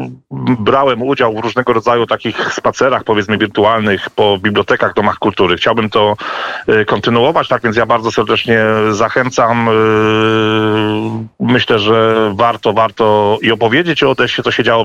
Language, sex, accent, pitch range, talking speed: Polish, male, native, 105-115 Hz, 135 wpm